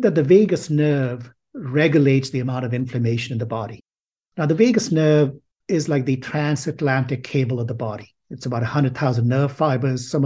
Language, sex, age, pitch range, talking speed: English, male, 50-69, 125-155 Hz, 175 wpm